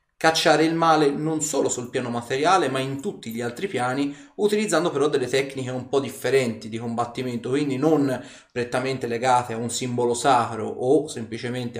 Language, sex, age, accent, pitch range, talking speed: Italian, male, 30-49, native, 120-150 Hz, 170 wpm